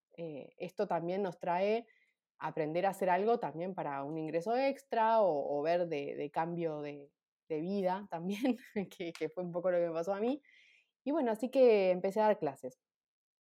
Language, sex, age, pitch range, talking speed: Spanish, female, 20-39, 165-210 Hz, 190 wpm